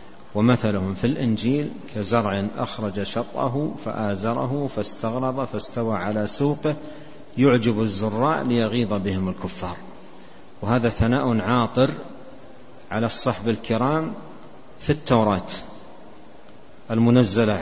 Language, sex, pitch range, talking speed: Arabic, male, 105-120 Hz, 85 wpm